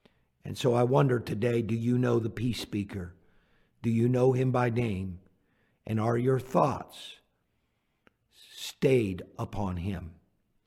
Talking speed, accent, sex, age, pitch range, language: 135 wpm, American, male, 50-69, 100-125 Hz, English